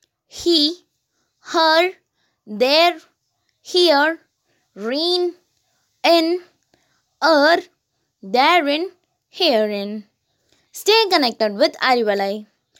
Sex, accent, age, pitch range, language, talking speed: female, native, 20-39, 230-345 Hz, Tamil, 55 wpm